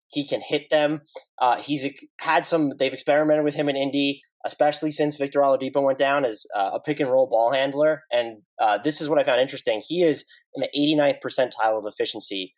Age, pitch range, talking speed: 20-39, 135-185 Hz, 210 wpm